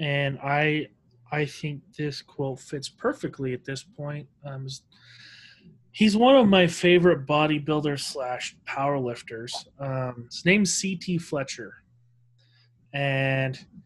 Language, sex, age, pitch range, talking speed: English, male, 30-49, 125-175 Hz, 110 wpm